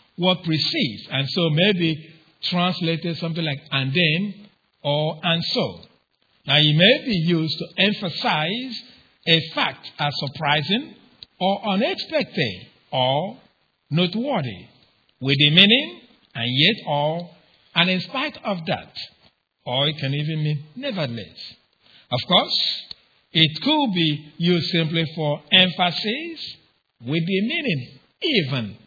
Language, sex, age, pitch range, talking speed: English, male, 50-69, 150-185 Hz, 120 wpm